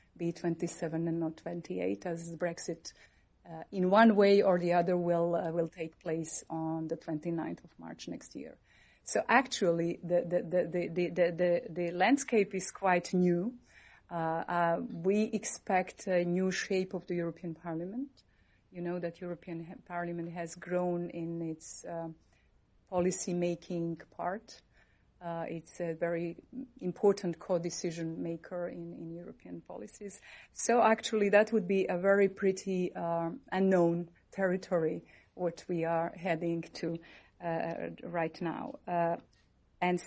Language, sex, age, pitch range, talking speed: English, female, 30-49, 170-195 Hz, 140 wpm